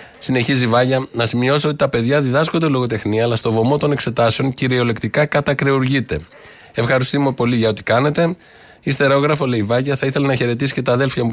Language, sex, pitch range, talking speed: Greek, male, 115-145 Hz, 180 wpm